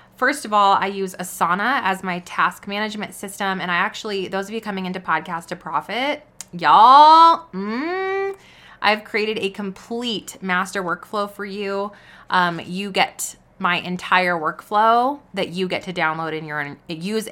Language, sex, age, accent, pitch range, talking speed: English, female, 20-39, American, 170-210 Hz, 150 wpm